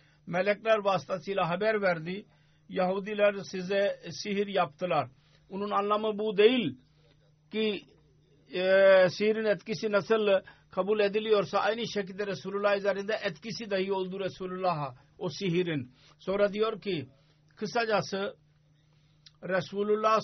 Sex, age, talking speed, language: male, 60-79, 100 wpm, Turkish